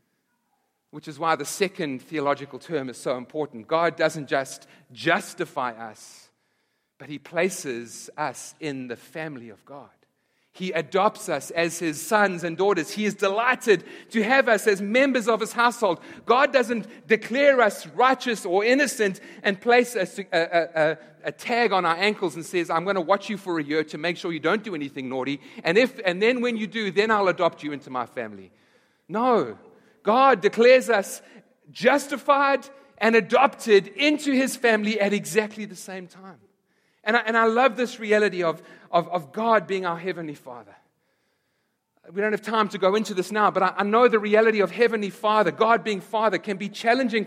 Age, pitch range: 40-59, 165-225 Hz